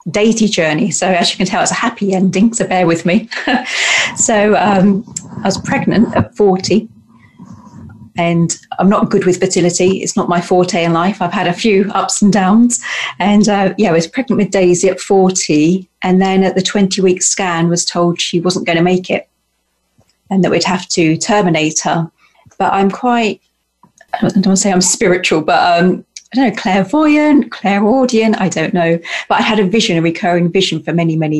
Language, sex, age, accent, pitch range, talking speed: English, female, 40-59, British, 170-200 Hz, 200 wpm